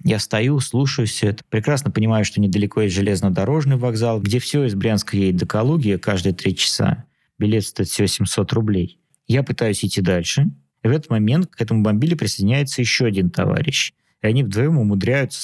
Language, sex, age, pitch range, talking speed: Russian, male, 20-39, 100-135 Hz, 180 wpm